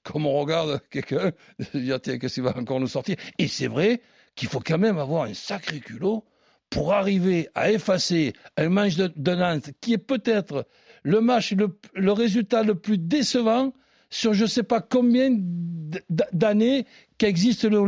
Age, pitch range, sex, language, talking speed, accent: 60-79, 180-245 Hz, male, French, 170 wpm, French